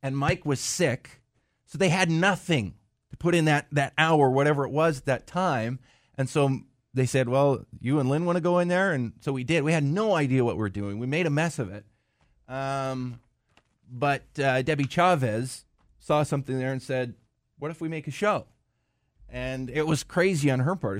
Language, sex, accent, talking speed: English, male, American, 210 wpm